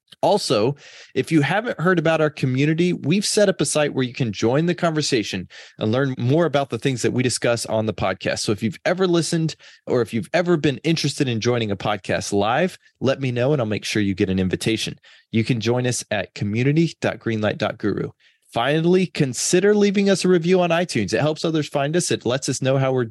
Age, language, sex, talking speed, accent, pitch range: 20-39, English, male, 215 wpm, American, 105-145 Hz